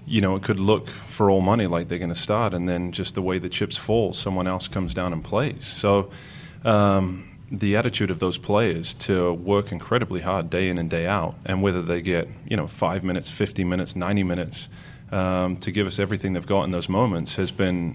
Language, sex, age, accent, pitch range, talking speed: English, male, 30-49, American, 90-100 Hz, 225 wpm